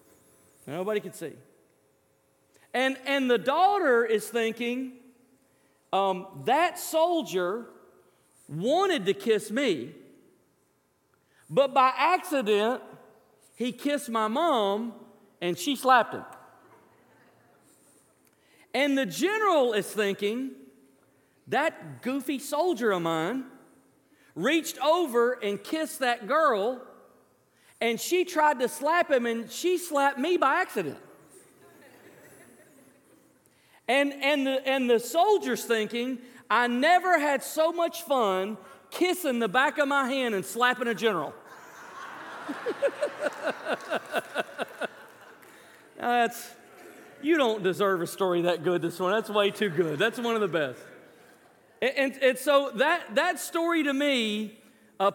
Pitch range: 210-295 Hz